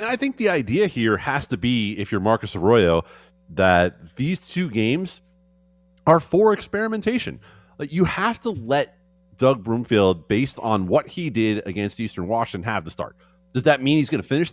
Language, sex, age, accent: English, male, 30-49, American